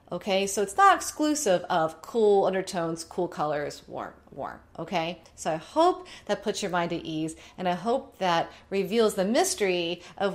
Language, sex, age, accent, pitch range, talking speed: English, female, 40-59, American, 175-220 Hz, 175 wpm